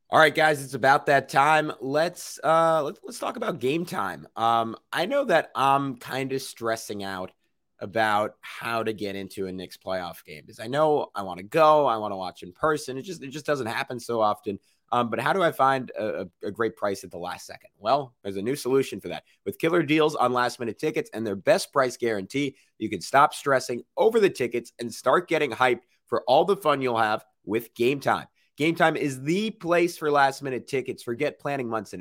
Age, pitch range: 30-49, 115-150 Hz